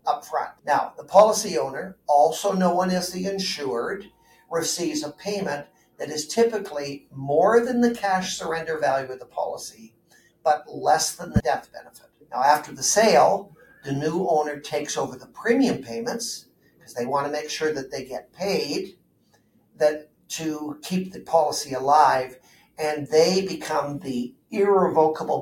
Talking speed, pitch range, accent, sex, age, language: 150 wpm, 140-185 Hz, American, male, 50-69, English